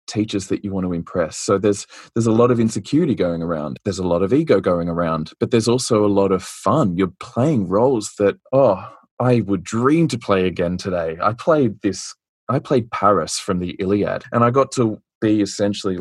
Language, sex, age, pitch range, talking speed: English, male, 20-39, 95-120 Hz, 210 wpm